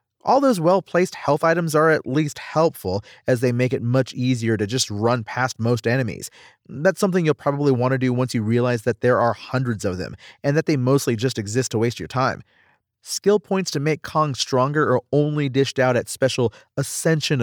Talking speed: 205 wpm